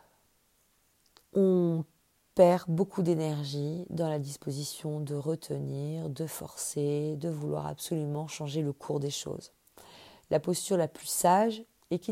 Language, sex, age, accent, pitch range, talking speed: French, female, 40-59, French, 145-175 Hz, 130 wpm